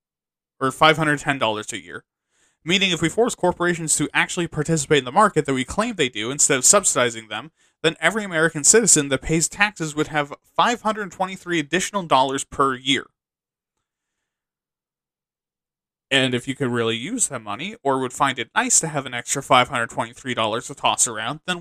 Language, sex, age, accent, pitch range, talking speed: English, male, 20-39, American, 140-195 Hz, 165 wpm